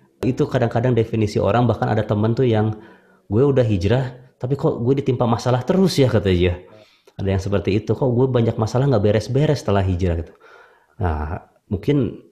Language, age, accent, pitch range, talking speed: Indonesian, 20-39, native, 95-125 Hz, 170 wpm